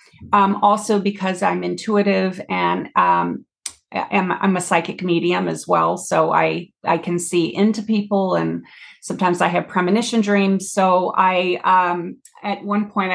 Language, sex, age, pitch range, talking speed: English, female, 30-49, 185-215 Hz, 150 wpm